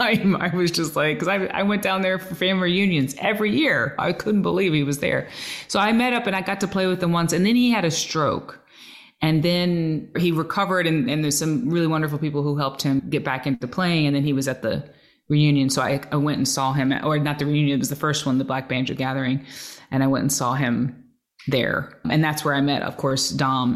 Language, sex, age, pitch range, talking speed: English, female, 30-49, 140-190 Hz, 250 wpm